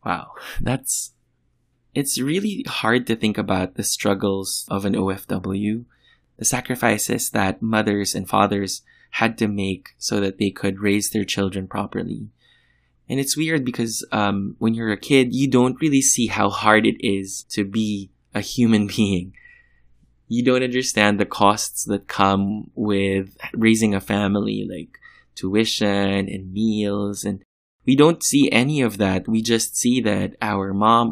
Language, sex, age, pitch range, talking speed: English, male, 20-39, 100-120 Hz, 155 wpm